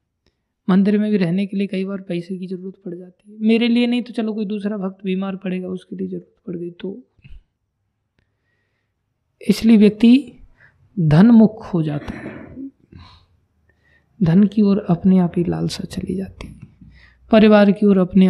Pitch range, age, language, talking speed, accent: 170-215 Hz, 20-39, Hindi, 165 wpm, native